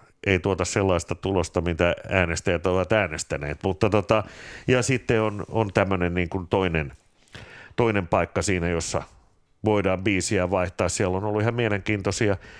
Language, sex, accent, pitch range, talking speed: Finnish, male, native, 85-100 Hz, 145 wpm